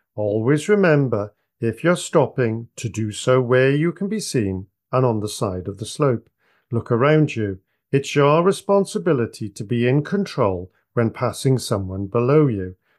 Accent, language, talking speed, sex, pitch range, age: British, English, 160 wpm, male, 105-160 Hz, 50-69